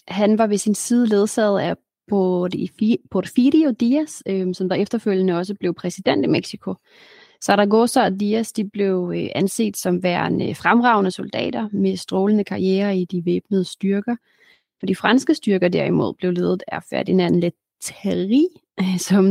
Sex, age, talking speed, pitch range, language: female, 30-49, 140 wpm, 180-210 Hz, Danish